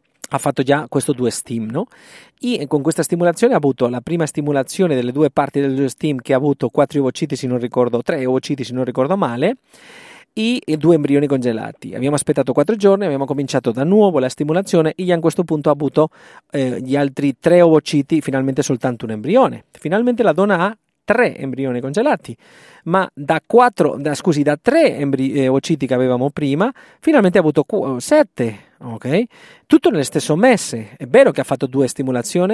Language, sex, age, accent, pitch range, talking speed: Italian, male, 40-59, native, 135-165 Hz, 180 wpm